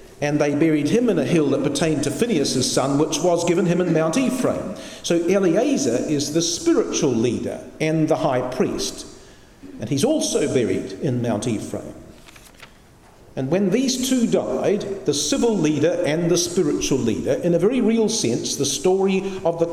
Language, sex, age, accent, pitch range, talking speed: English, male, 50-69, British, 140-180 Hz, 175 wpm